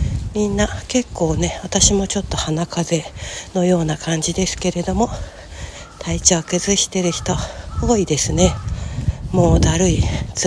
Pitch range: 140-200 Hz